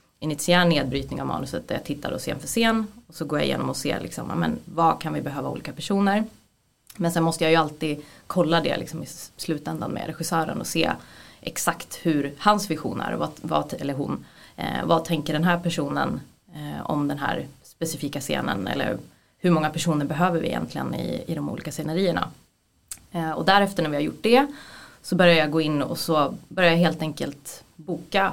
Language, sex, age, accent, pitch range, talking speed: Swedish, female, 20-39, native, 160-200 Hz, 195 wpm